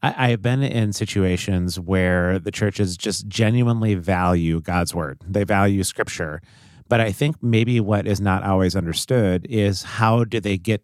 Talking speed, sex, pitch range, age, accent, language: 165 wpm, male, 95-115 Hz, 30-49, American, English